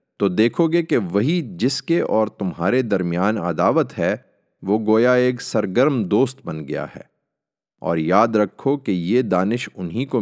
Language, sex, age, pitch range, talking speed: Urdu, male, 30-49, 90-120 Hz, 165 wpm